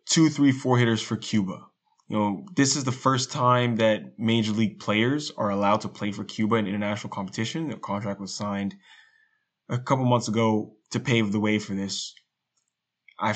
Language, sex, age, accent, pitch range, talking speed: English, male, 20-39, American, 105-125 Hz, 185 wpm